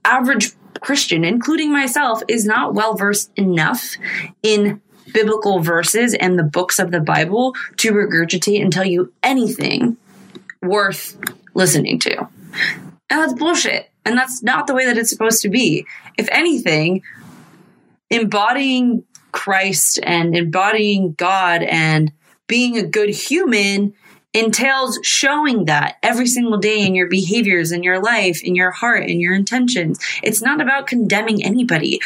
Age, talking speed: 20-39, 140 wpm